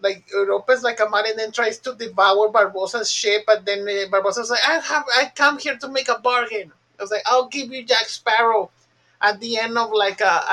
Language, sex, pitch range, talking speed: English, male, 190-230 Hz, 240 wpm